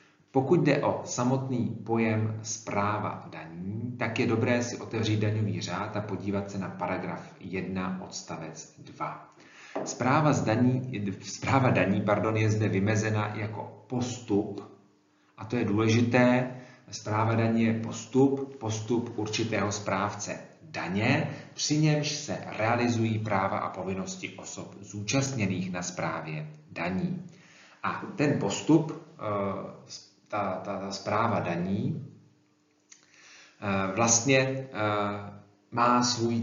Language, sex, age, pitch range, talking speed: Czech, male, 40-59, 100-120 Hz, 105 wpm